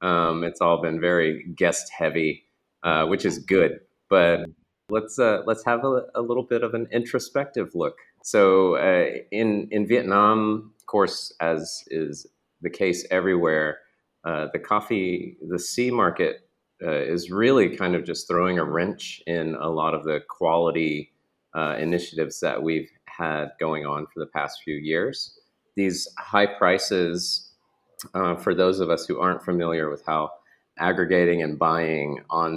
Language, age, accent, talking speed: English, 30-49, American, 160 wpm